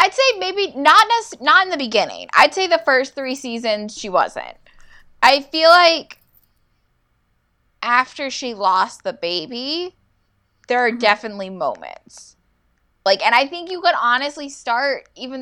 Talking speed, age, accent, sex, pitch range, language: 145 wpm, 10-29, American, female, 215-300 Hz, English